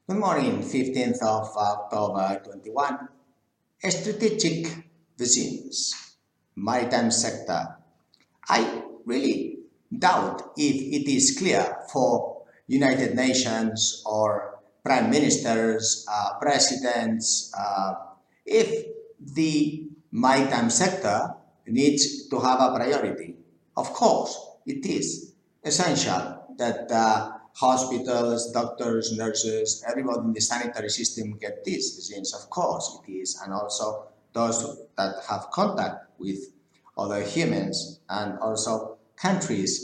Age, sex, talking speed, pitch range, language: 50-69, male, 105 wpm, 110-145 Hz, English